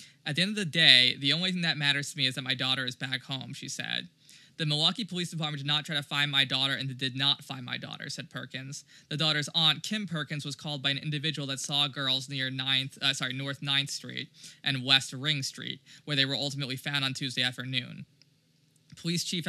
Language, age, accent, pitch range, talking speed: English, 20-39, American, 135-155 Hz, 235 wpm